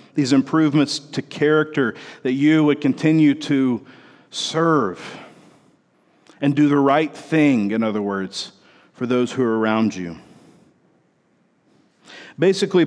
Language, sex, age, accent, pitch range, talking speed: English, male, 40-59, American, 125-160 Hz, 115 wpm